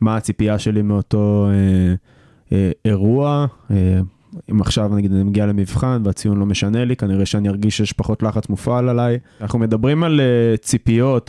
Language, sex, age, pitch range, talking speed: Hebrew, male, 20-39, 105-125 Hz, 165 wpm